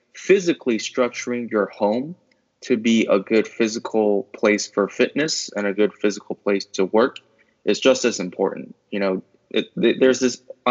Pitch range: 100-110 Hz